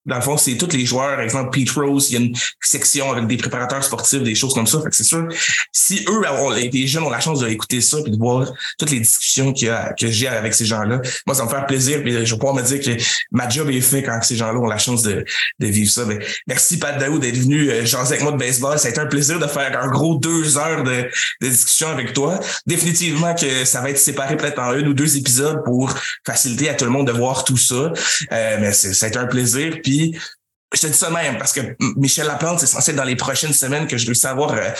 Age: 20-39